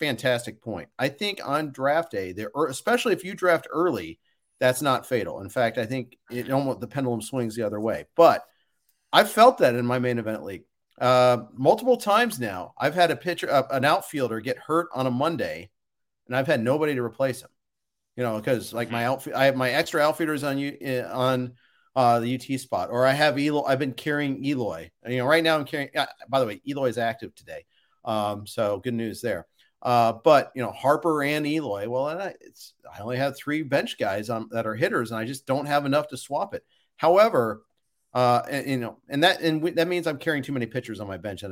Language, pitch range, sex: English, 115-145 Hz, male